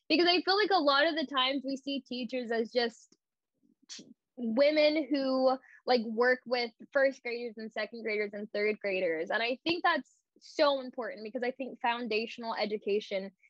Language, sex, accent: English, female, American